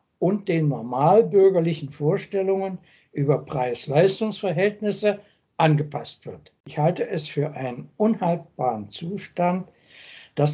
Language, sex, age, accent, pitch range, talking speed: German, male, 60-79, German, 145-180 Hz, 90 wpm